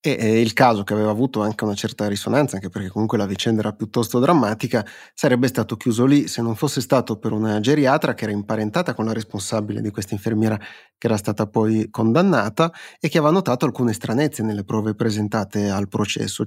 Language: Italian